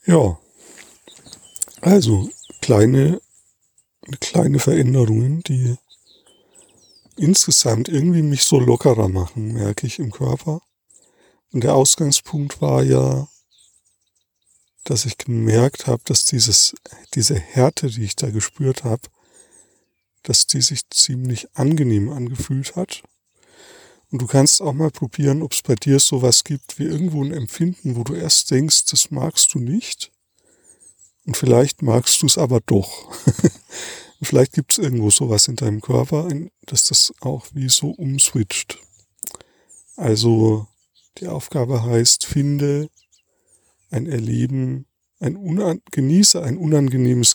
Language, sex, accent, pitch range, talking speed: German, male, German, 115-150 Hz, 125 wpm